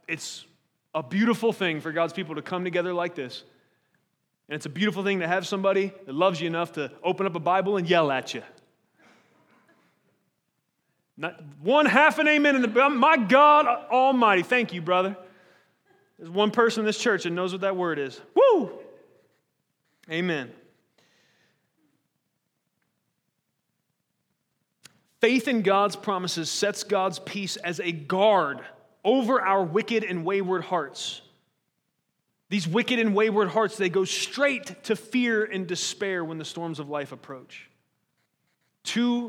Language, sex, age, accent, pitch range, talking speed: English, male, 30-49, American, 165-215 Hz, 145 wpm